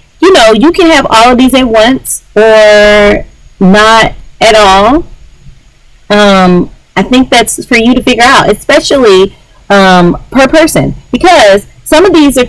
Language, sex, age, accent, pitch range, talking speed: English, female, 30-49, American, 170-235 Hz, 155 wpm